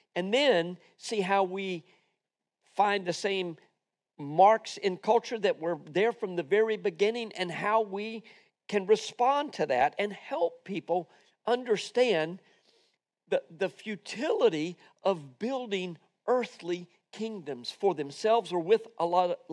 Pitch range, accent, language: 175-225 Hz, American, English